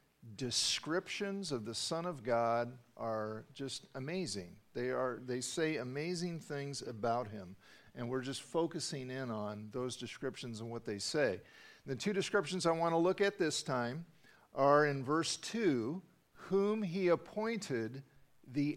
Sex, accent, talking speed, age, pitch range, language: male, American, 150 wpm, 50-69, 125-170 Hz, English